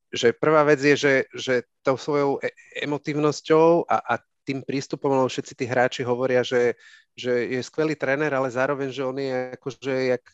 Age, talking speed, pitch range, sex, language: 30-49, 175 wpm, 125-145 Hz, male, Slovak